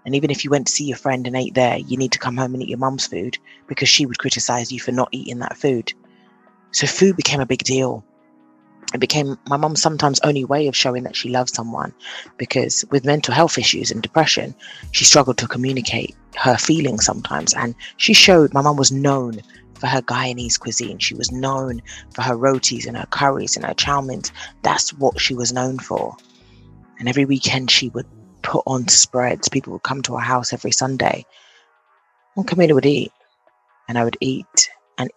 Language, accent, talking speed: English, British, 205 wpm